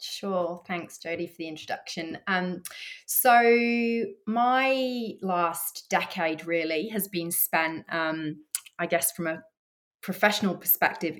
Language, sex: English, female